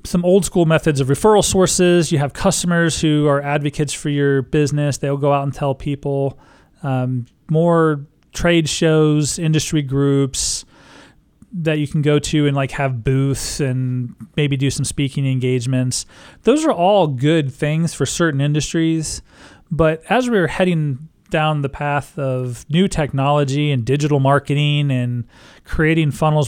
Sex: male